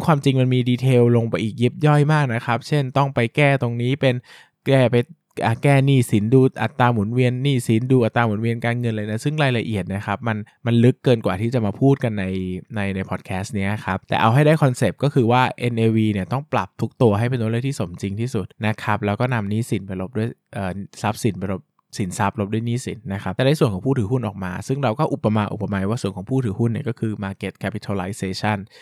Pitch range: 100-125 Hz